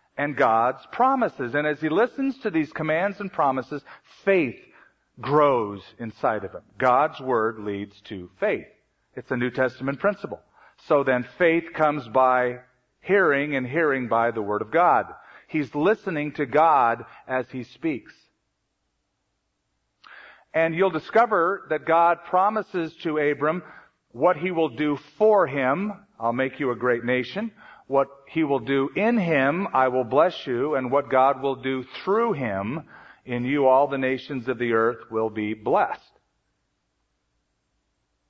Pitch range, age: 130-175 Hz, 50-69